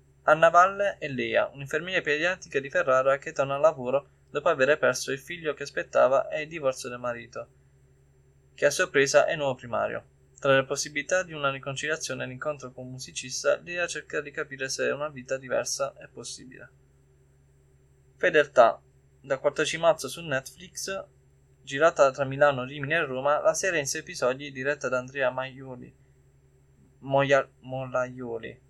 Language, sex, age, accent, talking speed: Italian, male, 20-39, native, 150 wpm